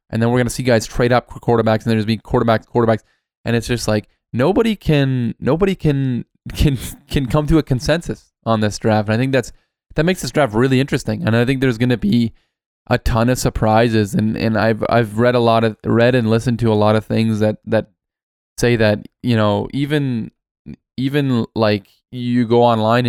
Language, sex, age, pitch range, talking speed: English, male, 20-39, 110-125 Hz, 210 wpm